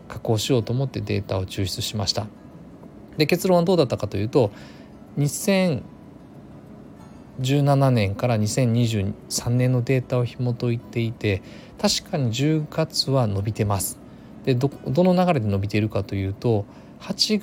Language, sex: Japanese, male